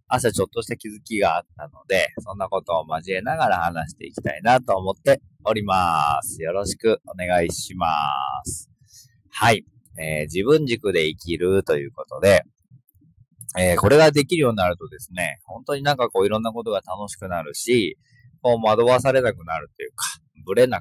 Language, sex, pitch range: Japanese, male, 90-130 Hz